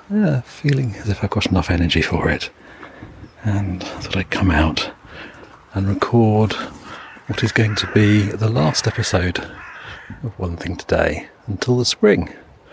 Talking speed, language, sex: 150 wpm, English, male